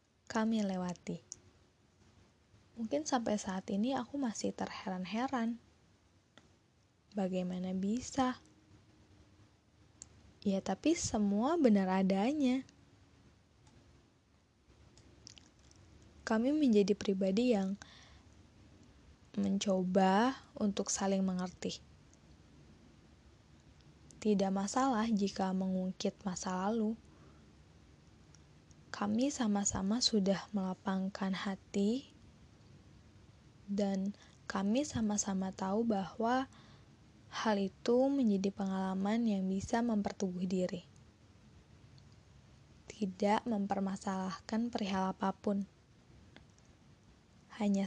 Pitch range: 180-215 Hz